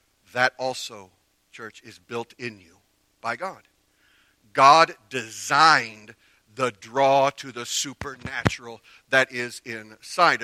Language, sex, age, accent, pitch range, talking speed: English, male, 40-59, American, 135-210 Hz, 110 wpm